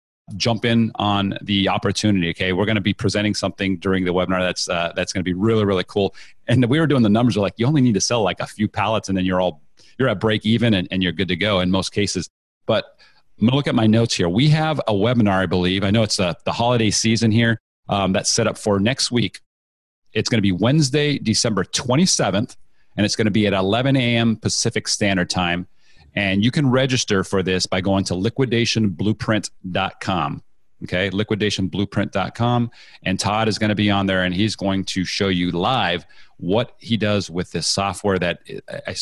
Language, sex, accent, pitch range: English, male, American, 95-115 Hz